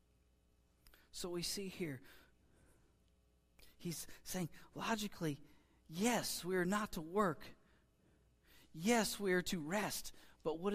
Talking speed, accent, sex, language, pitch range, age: 110 wpm, American, male, English, 155-240 Hz, 40-59